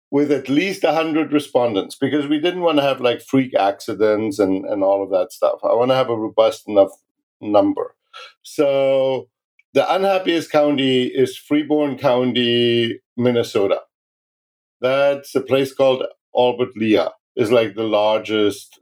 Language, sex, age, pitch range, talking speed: English, male, 50-69, 120-150 Hz, 150 wpm